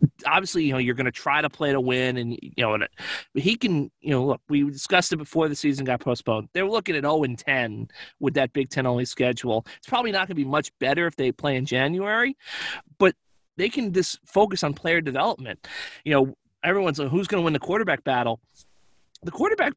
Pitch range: 135-175 Hz